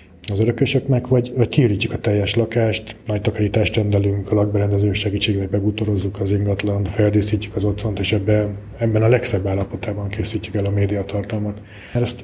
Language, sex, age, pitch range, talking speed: Hungarian, male, 20-39, 100-110 Hz, 145 wpm